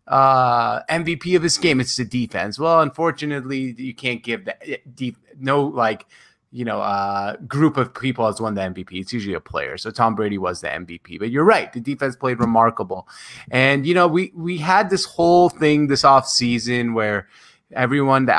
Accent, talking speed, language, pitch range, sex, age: American, 190 wpm, English, 115-150 Hz, male, 20-39